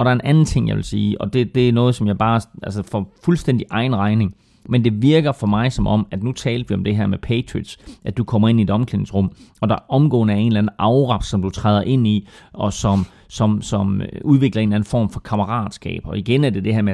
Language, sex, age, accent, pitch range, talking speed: Danish, male, 30-49, native, 95-115 Hz, 270 wpm